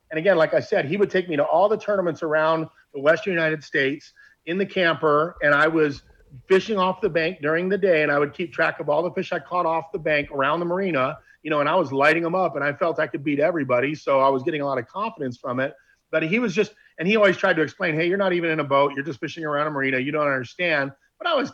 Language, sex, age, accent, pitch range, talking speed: English, male, 40-59, American, 140-180 Hz, 285 wpm